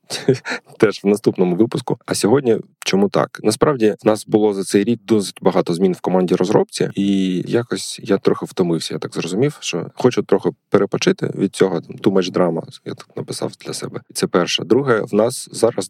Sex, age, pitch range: male, 20-39, 90-105 Hz